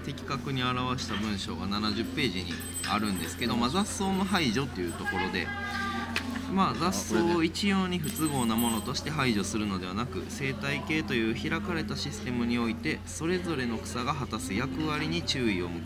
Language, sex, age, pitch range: Japanese, male, 20-39, 95-130 Hz